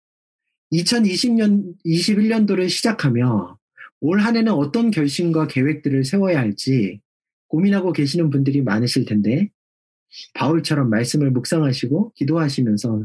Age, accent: 40-59, native